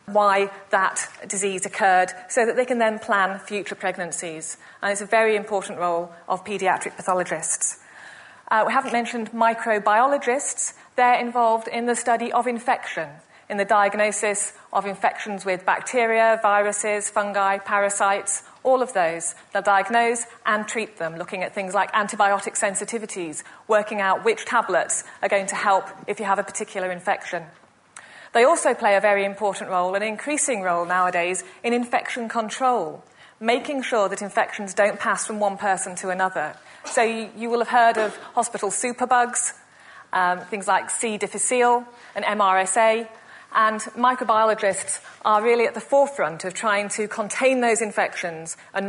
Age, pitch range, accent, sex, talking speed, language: 30-49, 195-230 Hz, British, female, 150 wpm, English